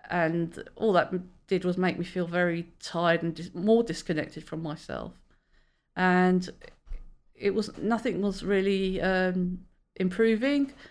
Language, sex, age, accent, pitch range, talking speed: English, female, 40-59, British, 165-195 Hz, 125 wpm